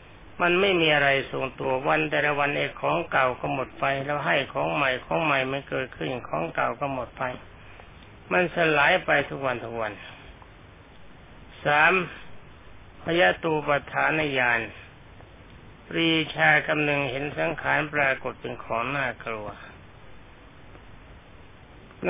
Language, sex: Thai, male